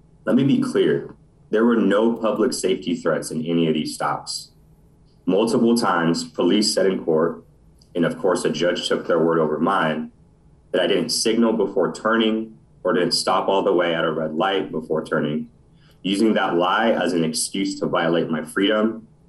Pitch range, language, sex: 80-110 Hz, English, male